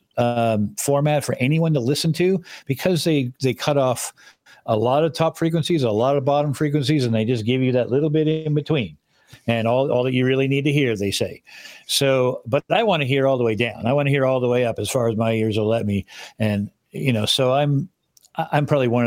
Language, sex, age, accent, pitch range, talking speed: English, male, 50-69, American, 110-140 Hz, 240 wpm